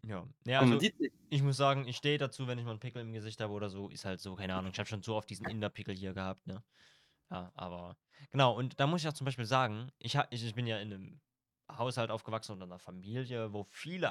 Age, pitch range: 20-39, 105-130 Hz